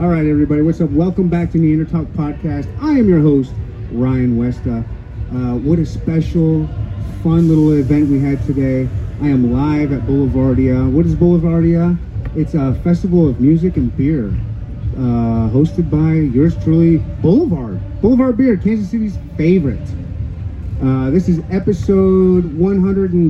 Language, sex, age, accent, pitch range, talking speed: English, male, 30-49, American, 125-165 Hz, 150 wpm